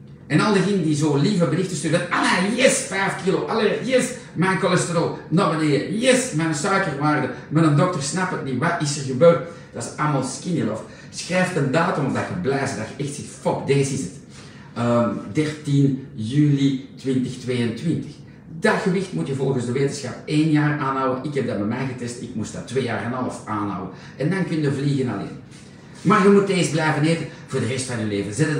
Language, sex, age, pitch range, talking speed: Dutch, male, 50-69, 130-175 Hz, 205 wpm